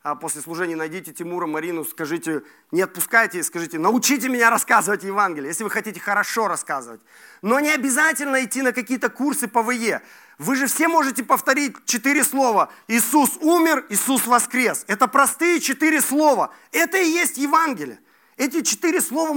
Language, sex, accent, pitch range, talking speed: Russian, male, native, 180-270 Hz, 155 wpm